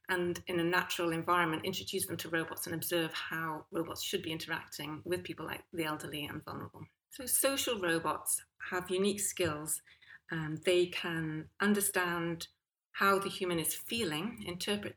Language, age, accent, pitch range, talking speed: English, 30-49, British, 155-180 Hz, 155 wpm